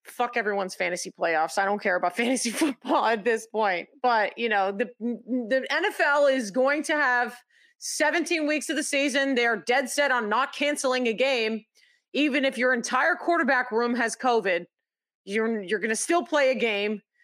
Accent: American